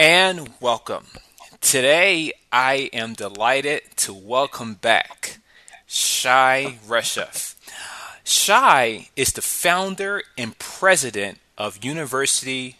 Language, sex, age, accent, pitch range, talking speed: English, male, 30-49, American, 115-145 Hz, 90 wpm